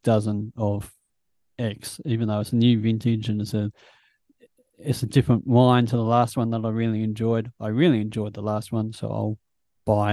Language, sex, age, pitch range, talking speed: English, male, 30-49, 110-125 Hz, 195 wpm